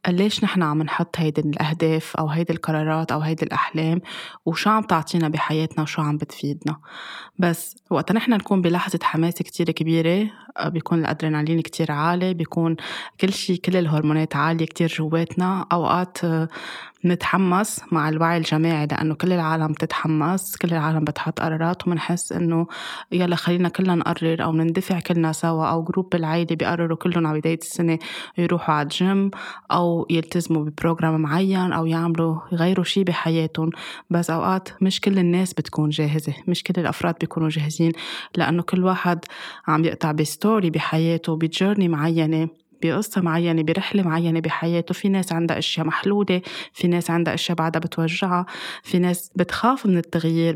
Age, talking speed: 20-39, 145 wpm